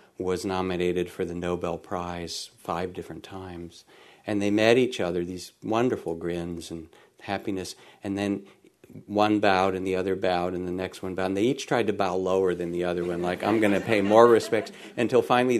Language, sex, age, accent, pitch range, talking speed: English, male, 50-69, American, 90-110 Hz, 200 wpm